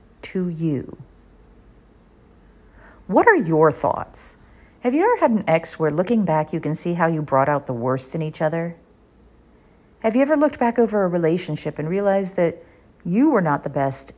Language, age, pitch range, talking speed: English, 40-59, 150-230 Hz, 180 wpm